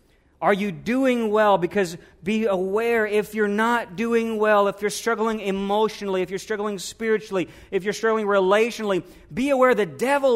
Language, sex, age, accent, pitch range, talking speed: English, male, 40-59, American, 180-220 Hz, 160 wpm